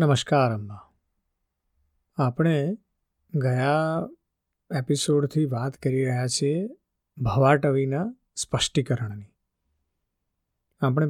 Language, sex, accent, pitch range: Gujarati, male, native, 115-155 Hz